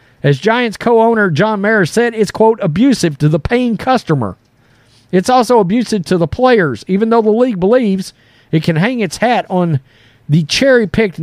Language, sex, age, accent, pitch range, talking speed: English, male, 40-59, American, 140-220 Hz, 170 wpm